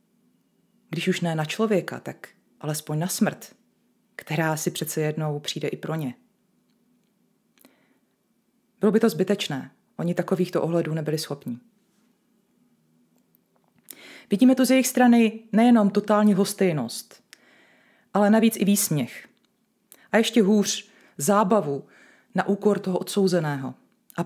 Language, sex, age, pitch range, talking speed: Czech, female, 30-49, 160-215 Hz, 115 wpm